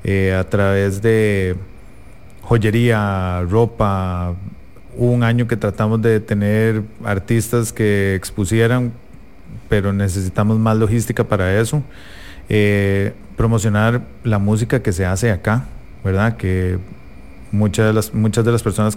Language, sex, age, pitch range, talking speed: English, male, 30-49, 95-115 Hz, 120 wpm